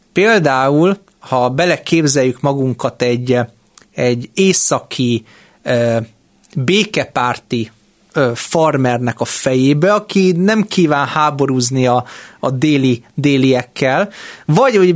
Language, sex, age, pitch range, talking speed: Hungarian, male, 30-49, 130-180 Hz, 85 wpm